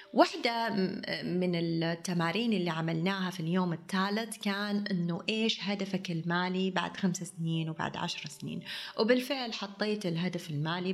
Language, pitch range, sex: Arabic, 165-205 Hz, female